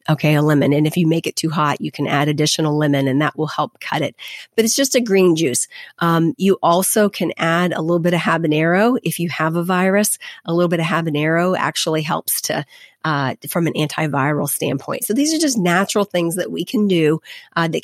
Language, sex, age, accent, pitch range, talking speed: English, female, 30-49, American, 155-180 Hz, 225 wpm